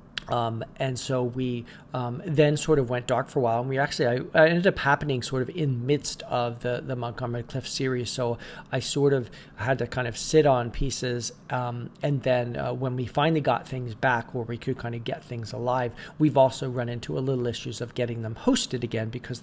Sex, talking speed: male, 225 wpm